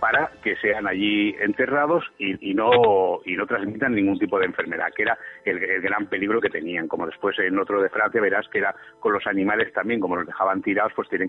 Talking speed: 225 wpm